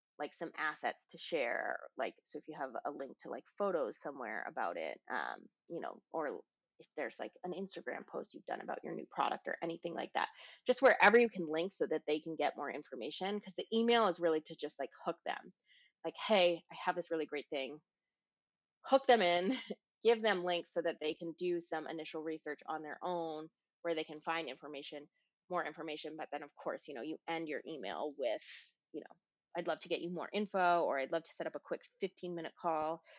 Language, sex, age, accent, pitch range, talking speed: English, female, 20-39, American, 160-190 Hz, 220 wpm